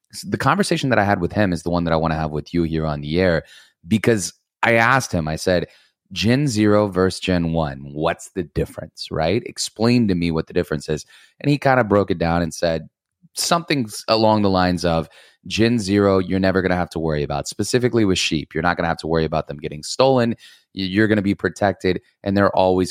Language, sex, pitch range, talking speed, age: English, male, 85-115 Hz, 235 wpm, 20-39